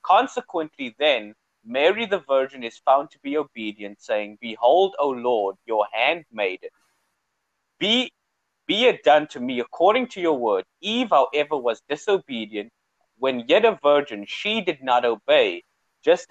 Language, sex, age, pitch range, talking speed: English, male, 30-49, 120-185 Hz, 145 wpm